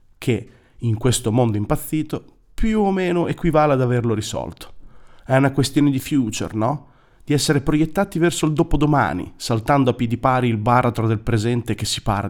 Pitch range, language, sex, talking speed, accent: 115-155 Hz, Italian, male, 170 wpm, native